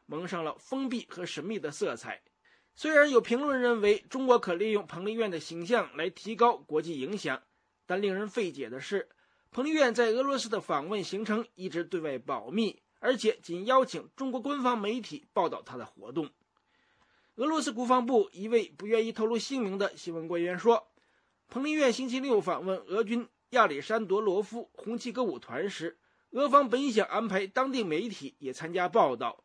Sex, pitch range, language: male, 195-255 Hz, English